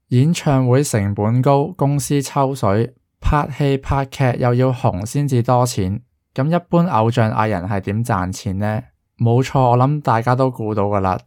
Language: Chinese